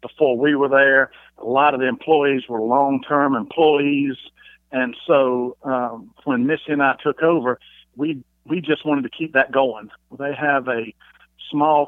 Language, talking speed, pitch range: English, 165 wpm, 125-155 Hz